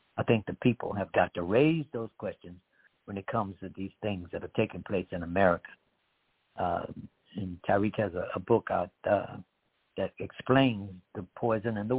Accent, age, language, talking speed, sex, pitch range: American, 60-79, English, 185 wpm, male, 95-120 Hz